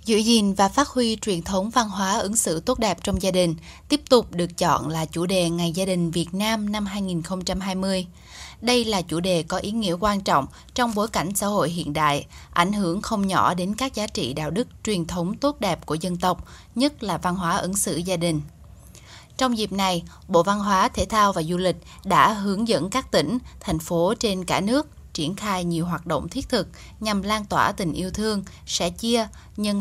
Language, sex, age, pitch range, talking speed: Vietnamese, female, 10-29, 170-215 Hz, 215 wpm